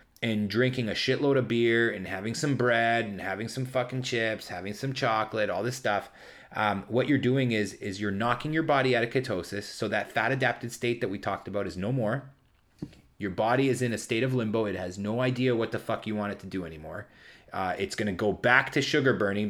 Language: English